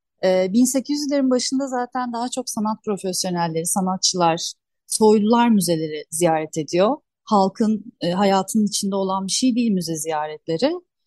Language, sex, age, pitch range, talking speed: Turkish, female, 30-49, 180-245 Hz, 115 wpm